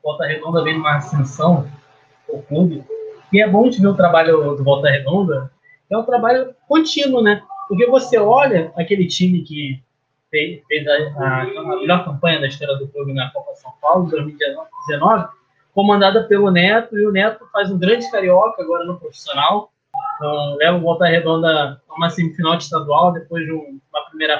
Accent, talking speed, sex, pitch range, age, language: Brazilian, 170 wpm, male, 150-225 Hz, 20-39, Portuguese